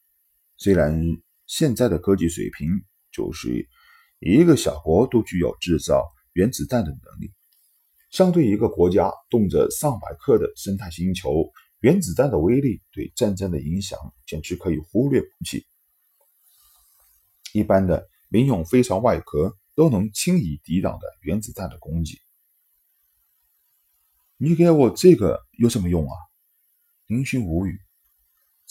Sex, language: male, Chinese